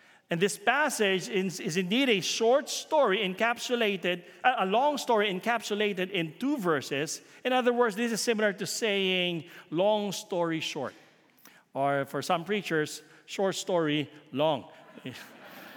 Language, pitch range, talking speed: English, 155-225 Hz, 135 wpm